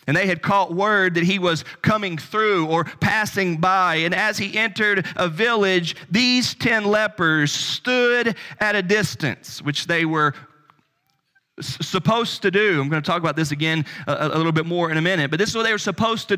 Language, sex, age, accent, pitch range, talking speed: English, male, 40-59, American, 155-210 Hz, 200 wpm